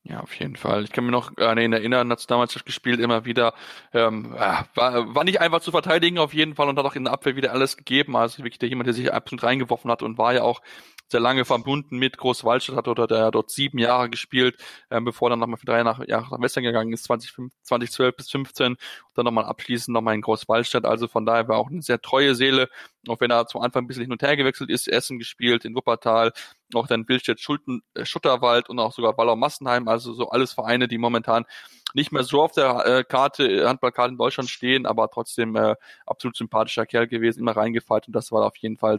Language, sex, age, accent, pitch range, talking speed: German, male, 20-39, German, 115-125 Hz, 230 wpm